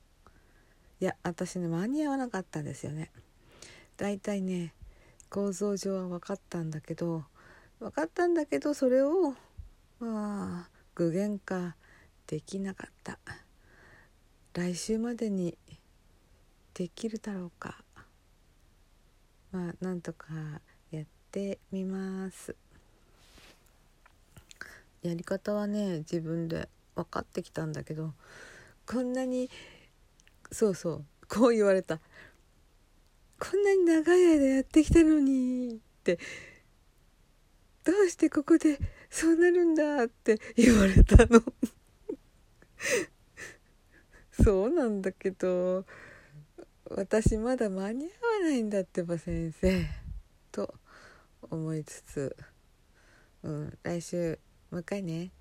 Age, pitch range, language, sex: 50-69, 160-235 Hz, Japanese, female